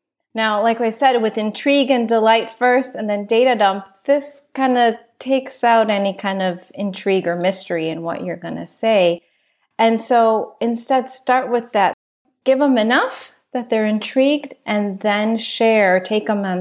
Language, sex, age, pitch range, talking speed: English, female, 30-49, 185-235 Hz, 175 wpm